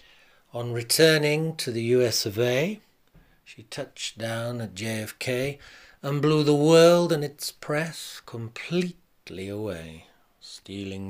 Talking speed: 120 wpm